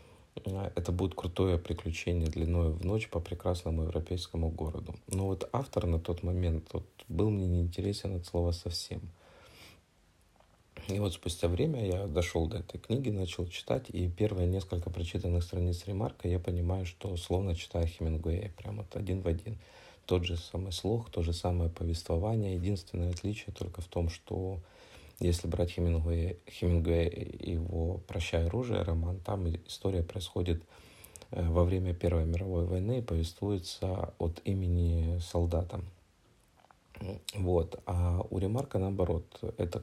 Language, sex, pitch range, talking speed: Russian, male, 85-100 Hz, 140 wpm